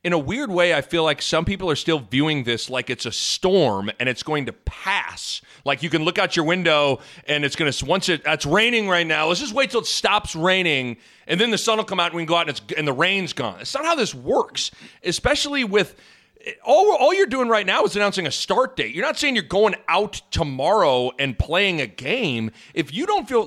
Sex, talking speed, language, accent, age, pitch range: male, 250 wpm, English, American, 30-49, 145-205 Hz